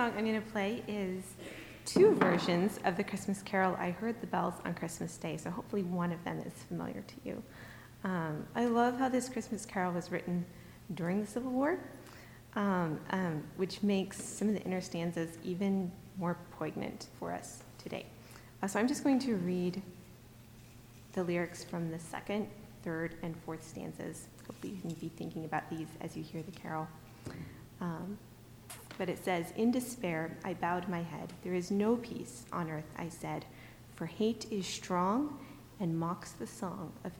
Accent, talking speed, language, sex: American, 175 wpm, English, female